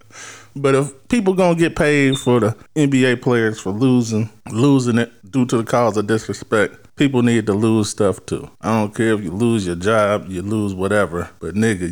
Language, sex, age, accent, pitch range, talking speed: English, male, 20-39, American, 105-145 Hz, 195 wpm